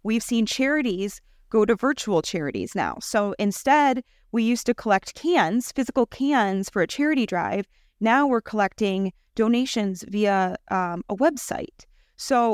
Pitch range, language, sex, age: 195-240 Hz, English, female, 20-39